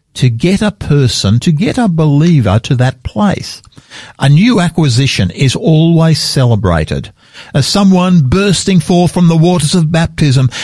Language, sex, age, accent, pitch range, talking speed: English, male, 50-69, Australian, 130-185 Hz, 145 wpm